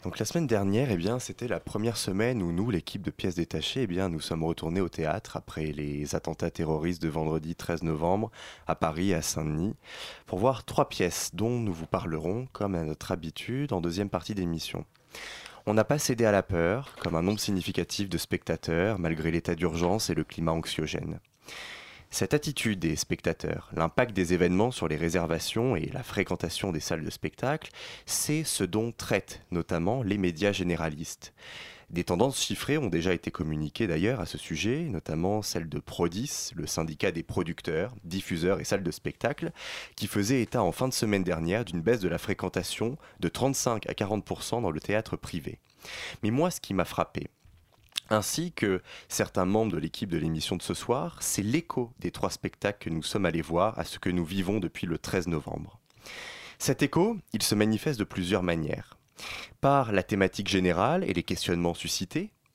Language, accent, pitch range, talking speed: French, French, 85-110 Hz, 185 wpm